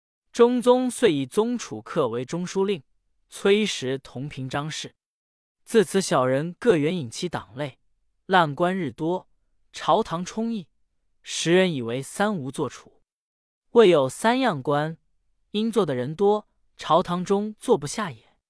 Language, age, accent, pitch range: Chinese, 20-39, native, 140-210 Hz